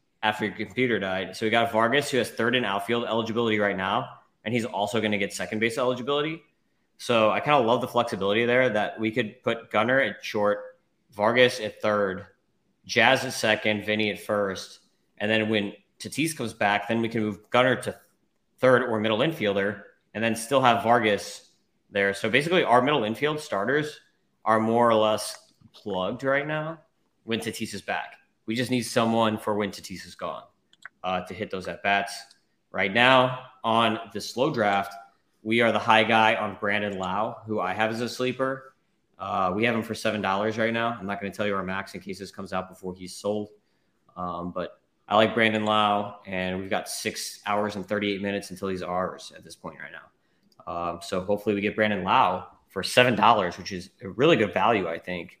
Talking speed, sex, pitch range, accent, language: 200 wpm, male, 100-115 Hz, American, English